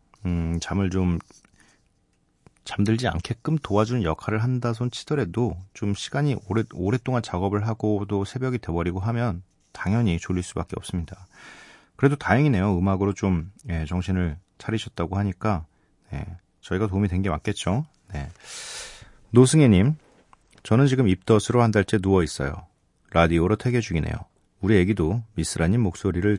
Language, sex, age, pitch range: Korean, male, 40-59, 90-115 Hz